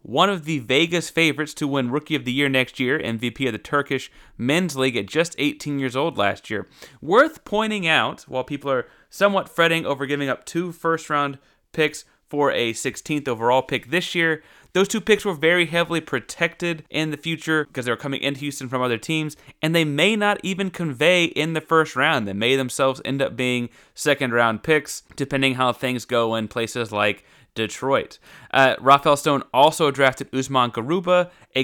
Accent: American